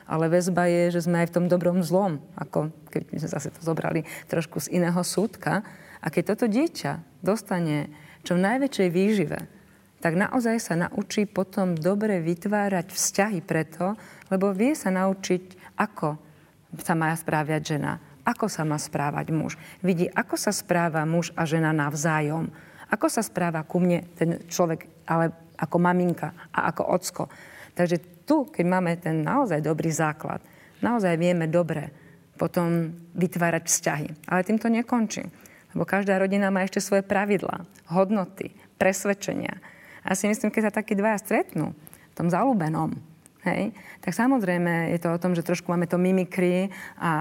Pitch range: 170-195 Hz